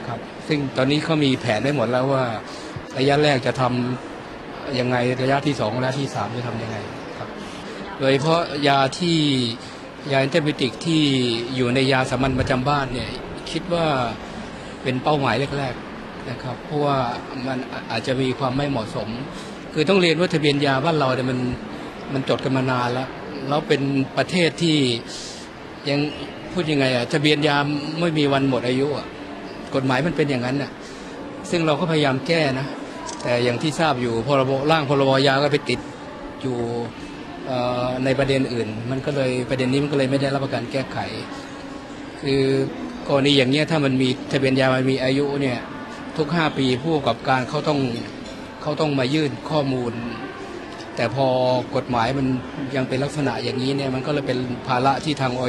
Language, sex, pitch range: Thai, male, 125-145 Hz